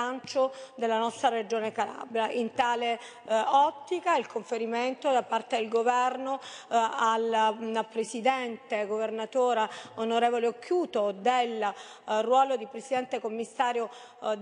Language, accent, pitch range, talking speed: Italian, native, 225-255 Hz, 115 wpm